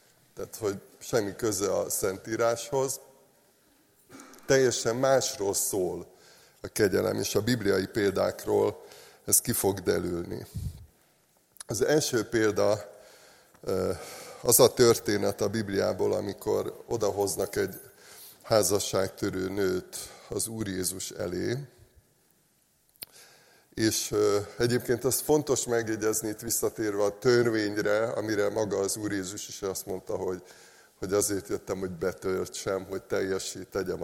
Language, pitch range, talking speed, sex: Hungarian, 100-125 Hz, 110 wpm, male